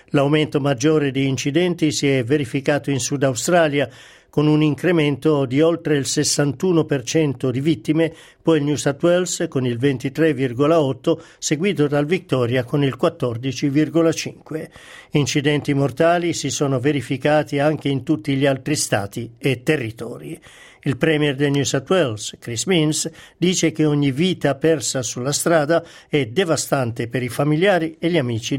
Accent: native